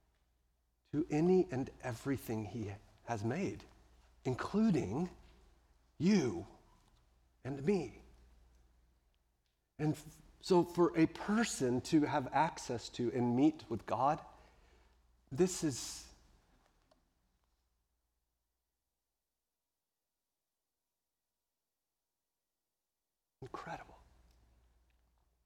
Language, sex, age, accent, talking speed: English, male, 50-69, American, 65 wpm